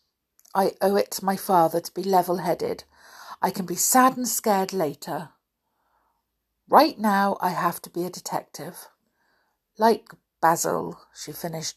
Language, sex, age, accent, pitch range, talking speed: English, female, 50-69, British, 165-235 Hz, 145 wpm